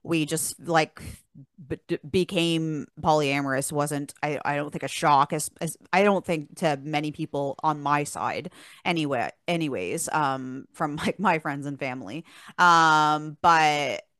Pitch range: 145-165 Hz